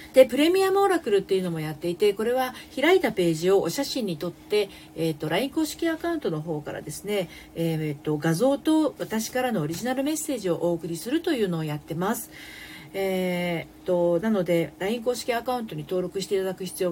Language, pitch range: Japanese, 160-250 Hz